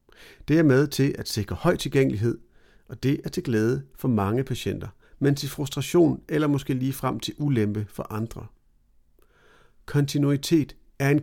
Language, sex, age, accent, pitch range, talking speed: Danish, male, 40-59, native, 110-145 Hz, 160 wpm